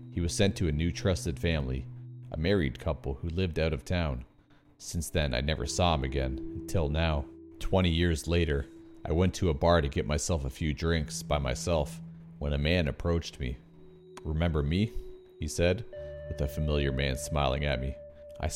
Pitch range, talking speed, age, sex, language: 75-95 Hz, 190 wpm, 40-59, male, English